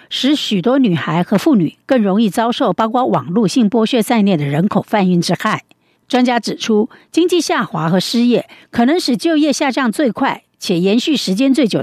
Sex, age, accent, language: female, 60-79, American, Chinese